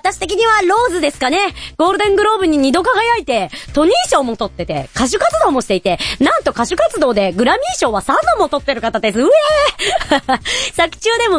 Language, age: Japanese, 40-59